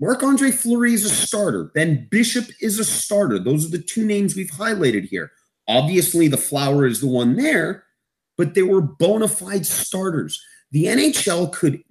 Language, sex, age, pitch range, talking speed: English, male, 30-49, 145-200 Hz, 170 wpm